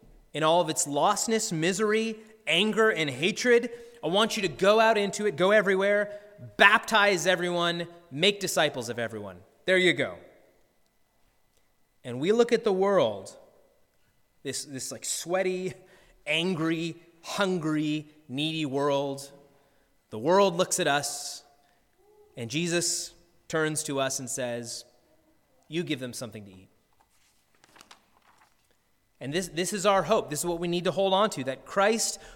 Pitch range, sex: 145-210 Hz, male